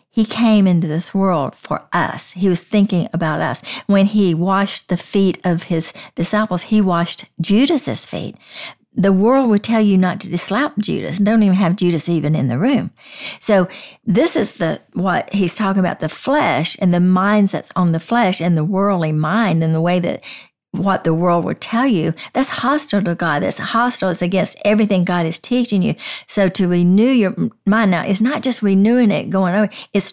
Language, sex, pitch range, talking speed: English, female, 175-215 Hz, 195 wpm